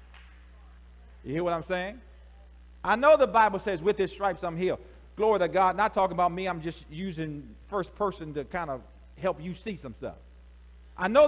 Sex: male